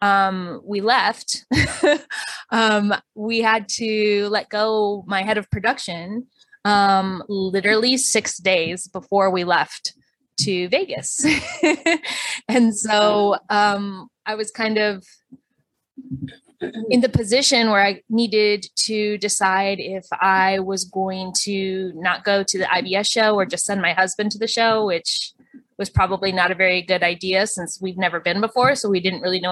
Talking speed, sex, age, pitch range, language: 150 wpm, female, 20-39, 190-225 Hz, English